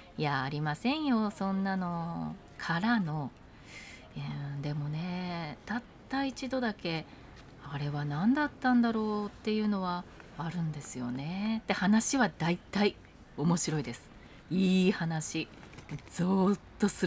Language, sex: Japanese, female